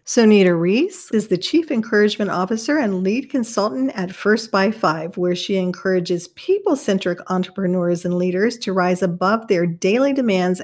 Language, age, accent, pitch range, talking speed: English, 50-69, American, 185-230 Hz, 160 wpm